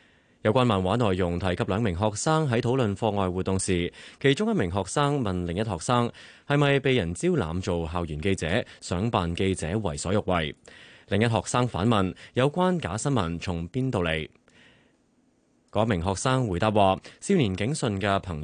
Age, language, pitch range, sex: 20-39, Chinese, 90-125 Hz, male